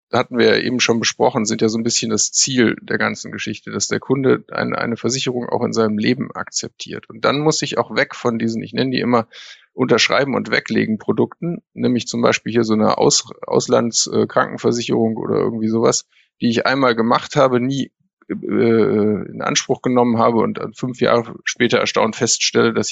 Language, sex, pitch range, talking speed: German, male, 110-135 Hz, 180 wpm